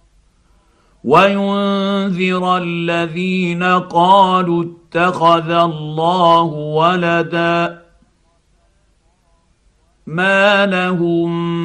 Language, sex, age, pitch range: Arabic, male, 50-69, 150-180 Hz